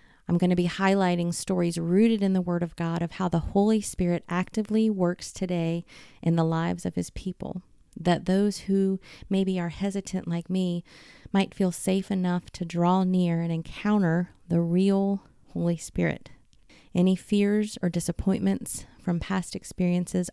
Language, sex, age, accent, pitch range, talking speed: English, female, 30-49, American, 165-195 Hz, 160 wpm